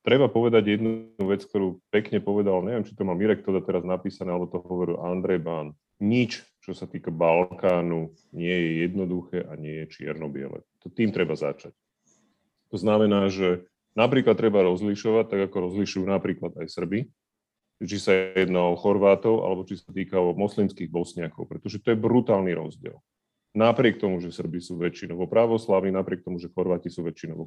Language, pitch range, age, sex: Slovak, 90-110 Hz, 30-49, male